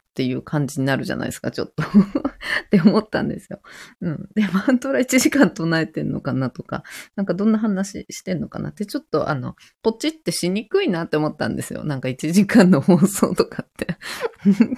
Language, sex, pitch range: Japanese, female, 140-220 Hz